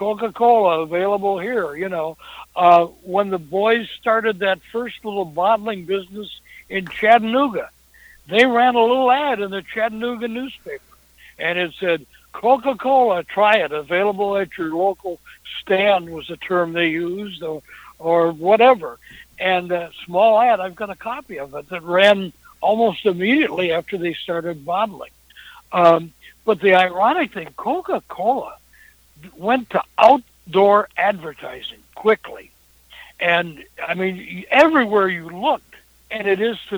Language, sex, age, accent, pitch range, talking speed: English, male, 60-79, American, 175-230 Hz, 135 wpm